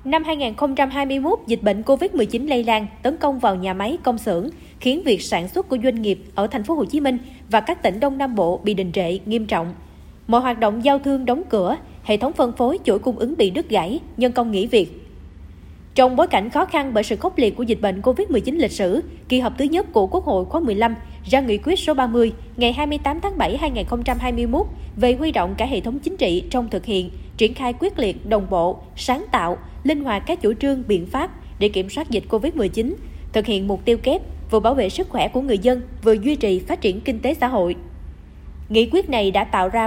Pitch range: 210-280 Hz